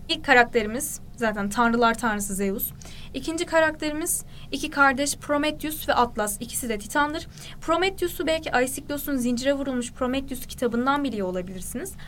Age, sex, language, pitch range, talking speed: 10-29, female, Turkish, 235-300 Hz, 125 wpm